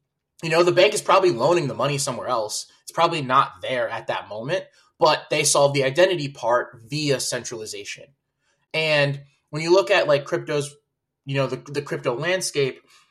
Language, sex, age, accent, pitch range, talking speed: English, male, 20-39, American, 130-175 Hz, 180 wpm